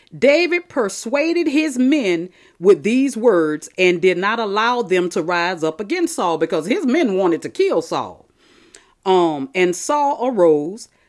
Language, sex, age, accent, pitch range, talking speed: English, female, 40-59, American, 185-290 Hz, 150 wpm